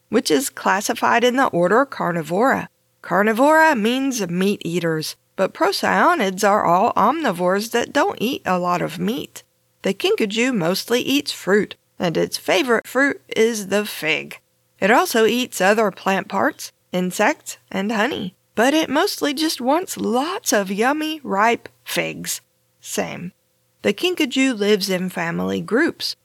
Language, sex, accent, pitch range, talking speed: English, female, American, 185-240 Hz, 140 wpm